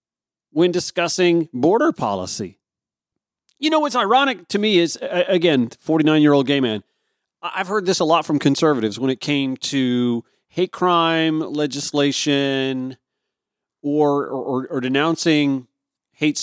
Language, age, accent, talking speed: English, 40-59, American, 125 wpm